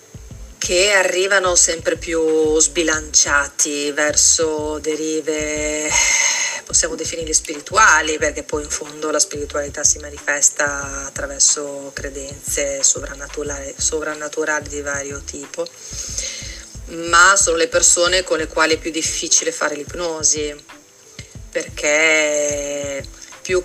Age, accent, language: 30-49, native, Italian